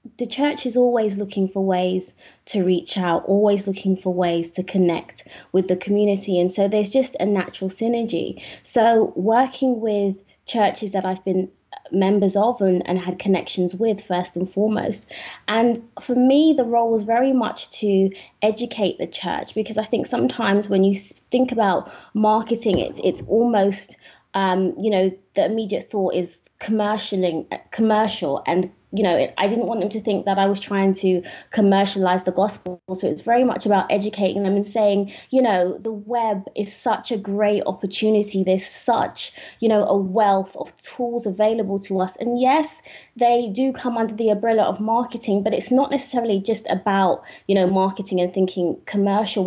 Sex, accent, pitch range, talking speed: female, British, 190-225 Hz, 175 wpm